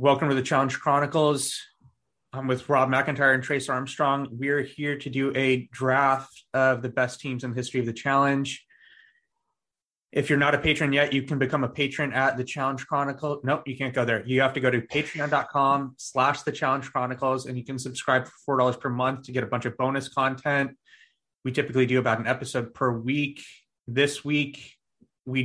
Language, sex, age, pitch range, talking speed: English, male, 20-39, 125-140 Hz, 200 wpm